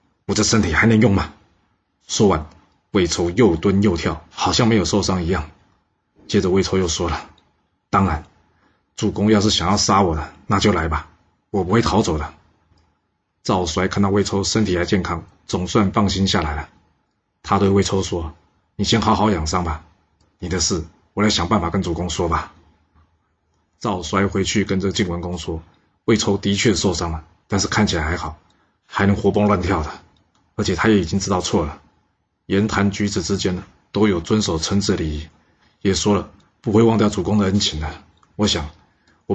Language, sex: Chinese, male